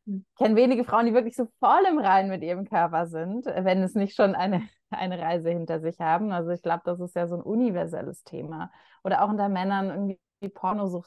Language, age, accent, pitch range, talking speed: German, 20-39, German, 175-200 Hz, 215 wpm